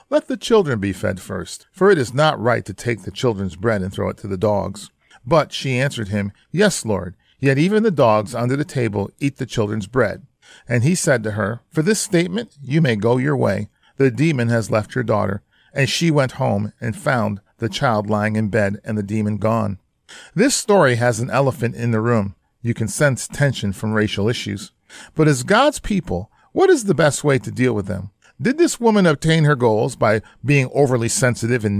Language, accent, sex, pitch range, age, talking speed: English, American, male, 105-145 Hz, 40-59, 210 wpm